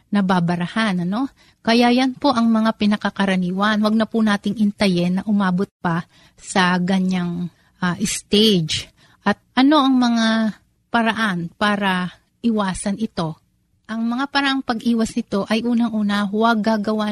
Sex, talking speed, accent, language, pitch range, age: female, 130 wpm, native, Filipino, 190-230 Hz, 30-49